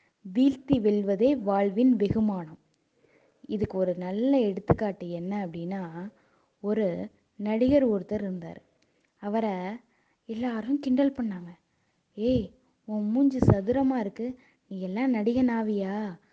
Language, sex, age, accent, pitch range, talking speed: Tamil, female, 20-39, native, 185-235 Hz, 95 wpm